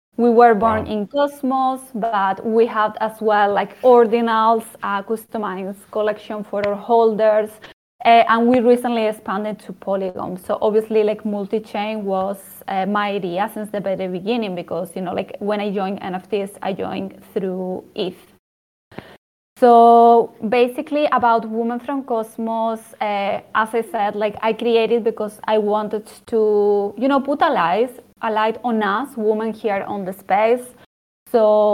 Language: English